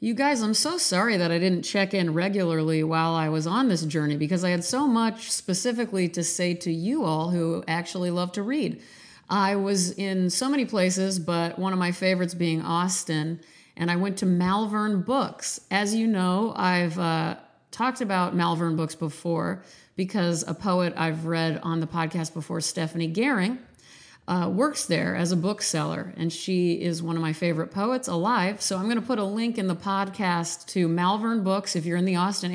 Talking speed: 195 wpm